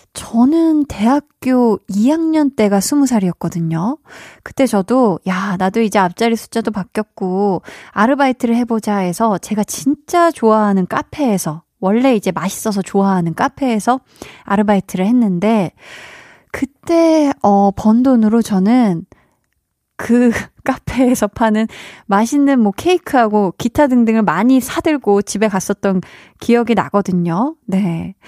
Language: Korean